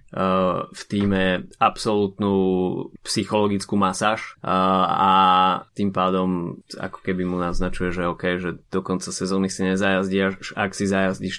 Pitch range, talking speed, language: 95-115 Hz, 125 wpm, Slovak